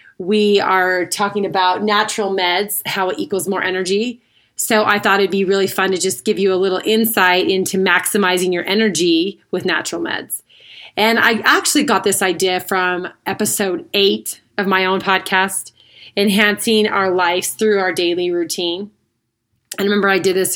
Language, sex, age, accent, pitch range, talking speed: English, female, 30-49, American, 175-205 Hz, 165 wpm